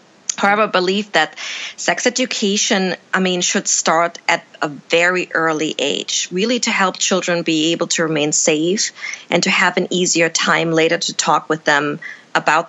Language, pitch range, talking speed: English, 165-200 Hz, 165 wpm